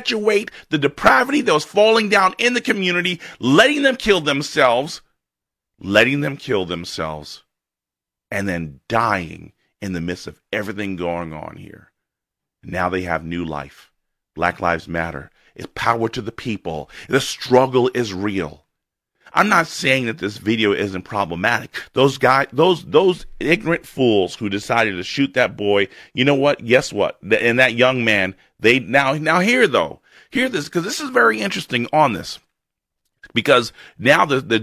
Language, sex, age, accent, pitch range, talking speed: English, male, 30-49, American, 105-175 Hz, 160 wpm